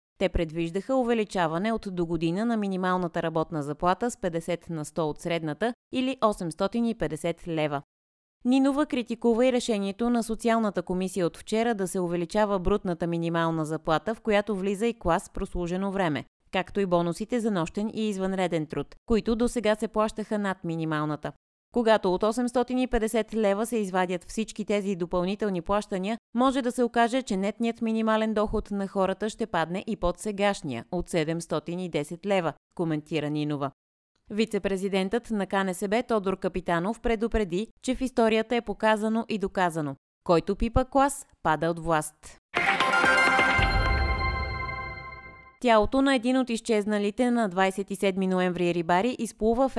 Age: 30-49